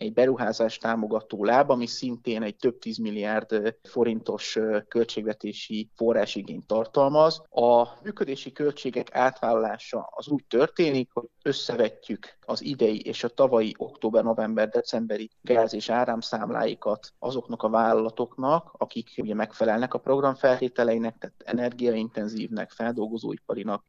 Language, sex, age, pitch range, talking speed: Hungarian, male, 30-49, 115-130 Hz, 115 wpm